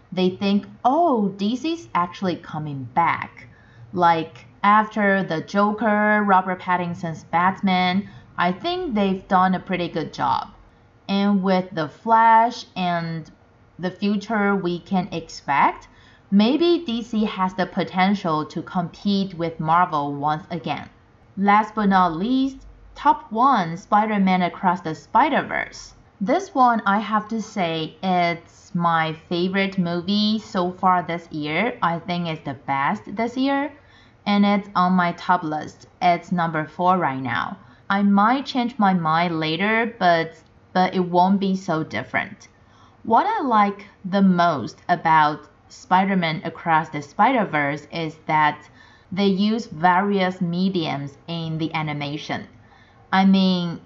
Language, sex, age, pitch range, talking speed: English, female, 30-49, 160-205 Hz, 135 wpm